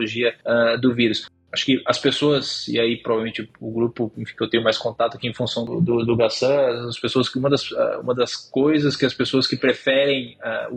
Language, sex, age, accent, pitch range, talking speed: Portuguese, male, 20-39, Brazilian, 115-135 Hz, 215 wpm